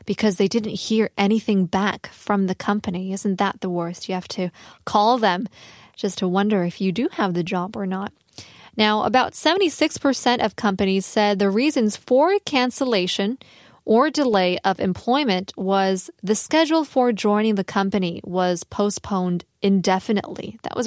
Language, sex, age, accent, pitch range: Korean, female, 20-39, American, 195-240 Hz